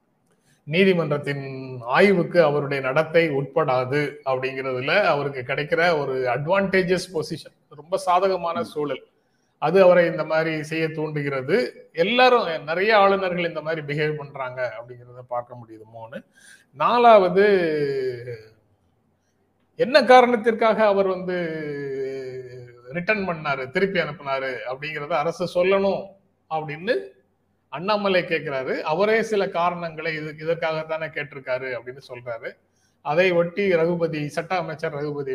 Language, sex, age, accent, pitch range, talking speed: Tamil, male, 30-49, native, 130-190 Hz, 100 wpm